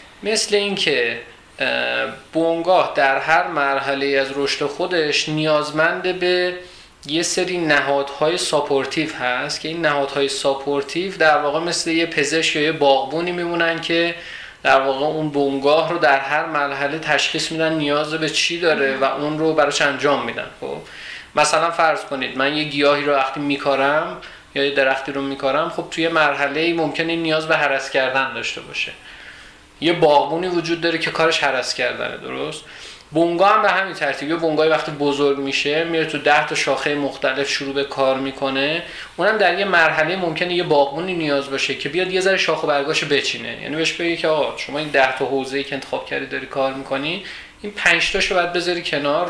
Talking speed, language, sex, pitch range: 175 wpm, Persian, male, 140-165 Hz